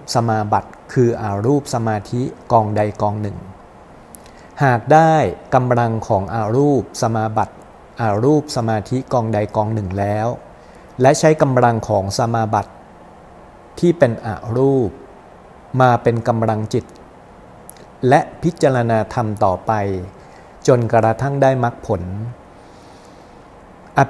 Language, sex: Thai, male